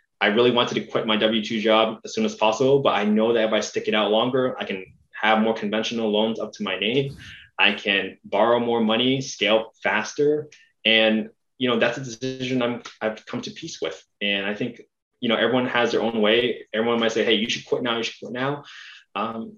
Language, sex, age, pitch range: English, male, 20-39, 110-140 Hz